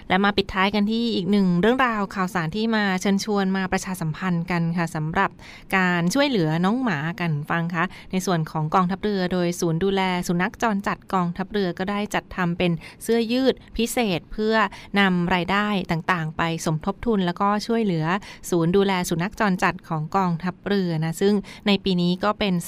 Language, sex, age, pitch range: Thai, female, 20-39, 175-205 Hz